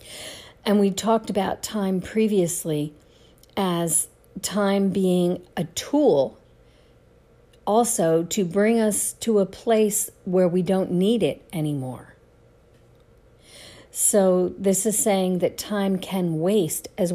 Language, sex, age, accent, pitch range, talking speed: English, female, 50-69, American, 165-200 Hz, 115 wpm